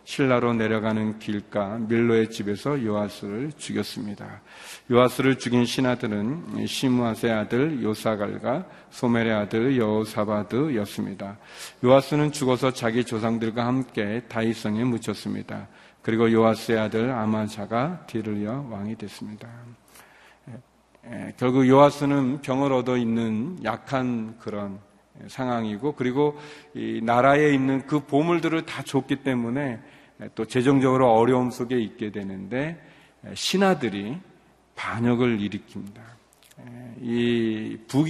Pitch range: 110-135 Hz